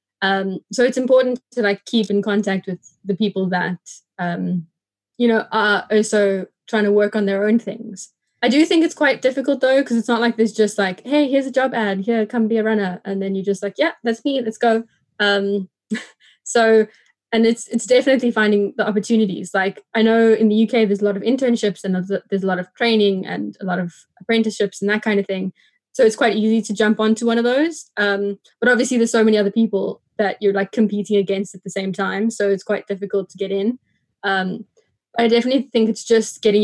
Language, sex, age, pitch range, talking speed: English, female, 20-39, 200-235 Hz, 225 wpm